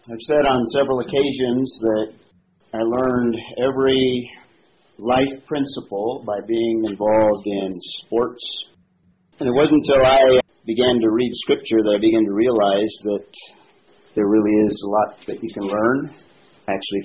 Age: 50-69